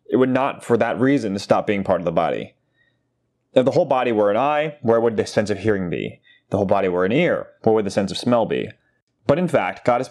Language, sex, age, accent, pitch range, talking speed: English, male, 30-49, American, 105-135 Hz, 265 wpm